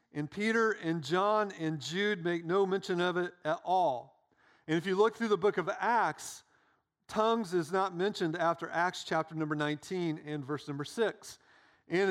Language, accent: English, American